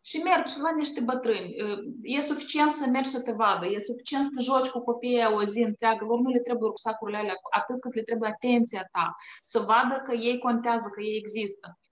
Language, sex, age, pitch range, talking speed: Romanian, female, 20-39, 205-250 Hz, 200 wpm